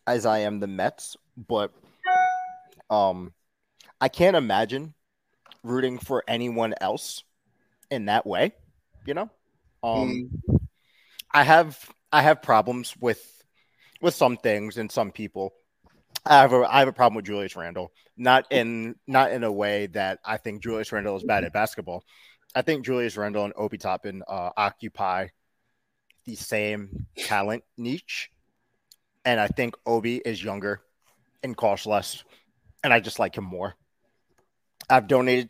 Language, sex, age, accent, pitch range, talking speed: English, male, 30-49, American, 100-125 Hz, 145 wpm